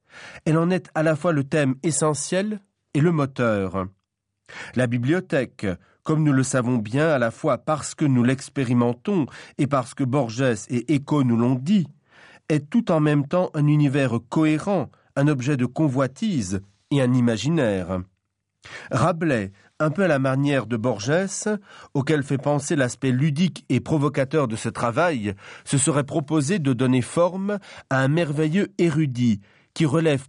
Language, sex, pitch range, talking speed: French, male, 125-165 Hz, 160 wpm